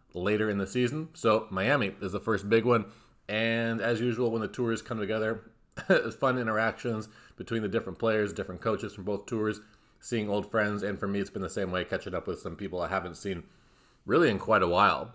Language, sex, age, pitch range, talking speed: English, male, 30-49, 100-120 Hz, 215 wpm